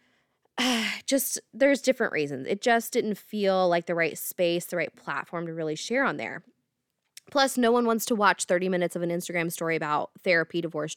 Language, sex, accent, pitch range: English, female, American, 170-255 Hz